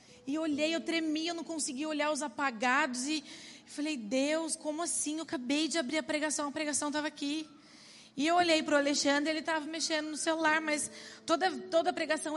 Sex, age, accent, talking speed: female, 20-39, Brazilian, 205 wpm